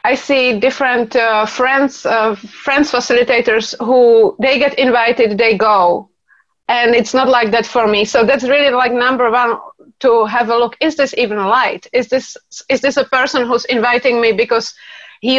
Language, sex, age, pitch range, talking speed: English, female, 30-49, 225-260 Hz, 180 wpm